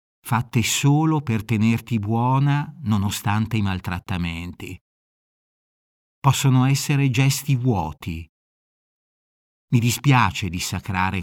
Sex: male